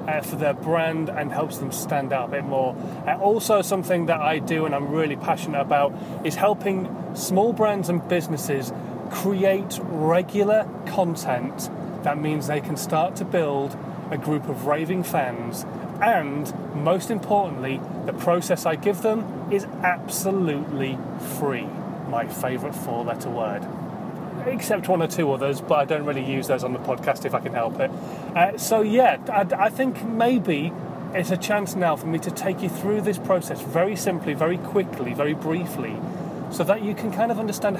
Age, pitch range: 30-49, 155-200 Hz